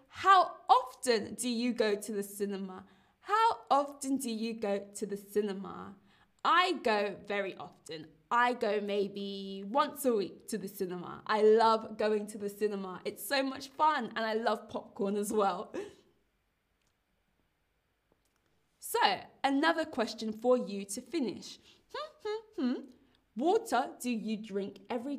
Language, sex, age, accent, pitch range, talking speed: English, female, 20-39, British, 215-285 Hz, 135 wpm